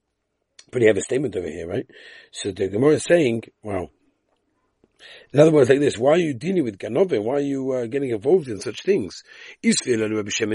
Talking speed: 205 wpm